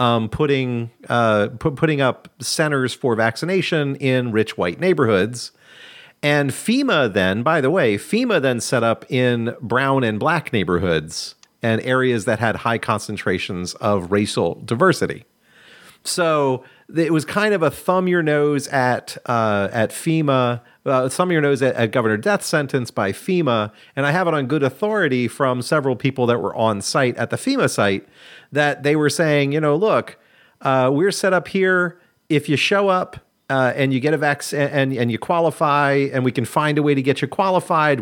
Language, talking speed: English, 180 wpm